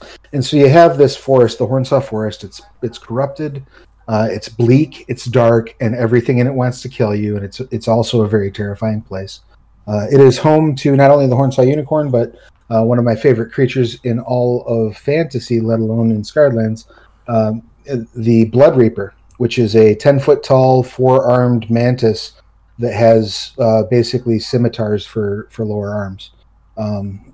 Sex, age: male, 30-49